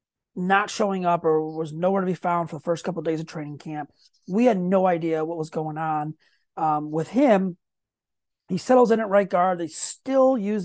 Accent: American